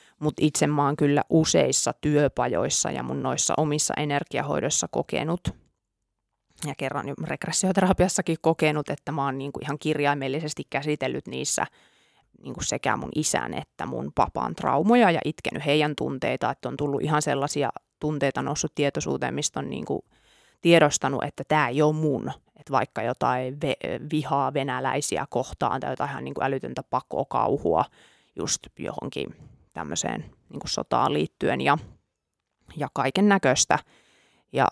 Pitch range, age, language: 140-155 Hz, 30-49, Finnish